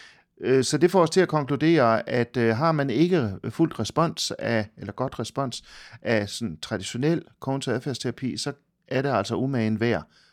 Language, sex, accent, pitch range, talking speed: Danish, male, native, 105-140 Hz, 155 wpm